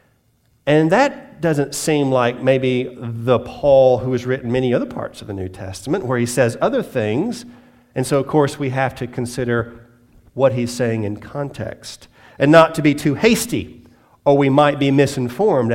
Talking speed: 180 wpm